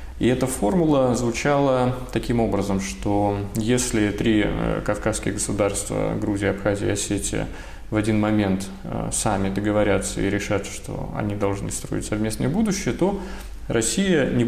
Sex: male